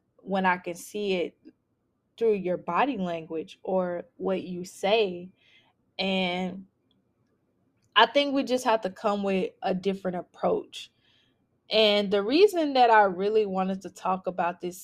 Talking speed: 145 wpm